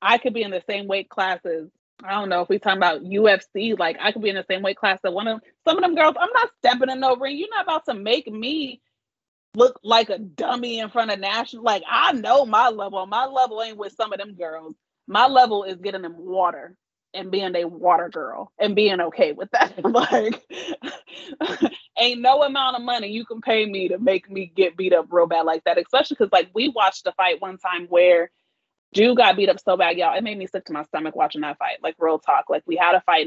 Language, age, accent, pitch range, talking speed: English, 30-49, American, 180-235 Hz, 245 wpm